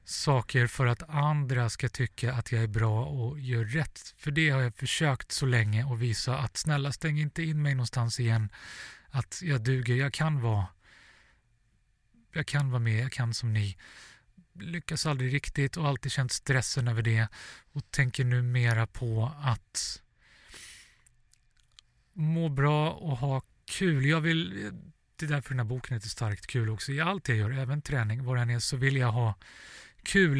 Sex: male